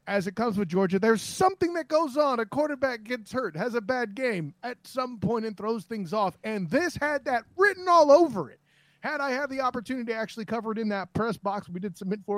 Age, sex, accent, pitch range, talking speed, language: 30-49, male, American, 180-235 Hz, 240 wpm, English